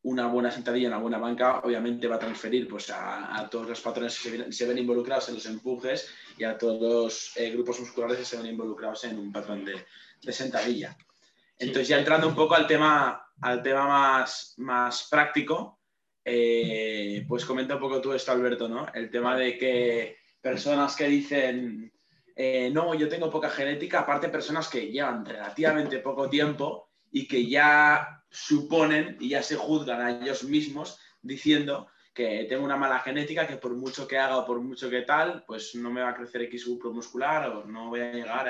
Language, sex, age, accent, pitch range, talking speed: Spanish, male, 20-39, Spanish, 120-145 Hz, 195 wpm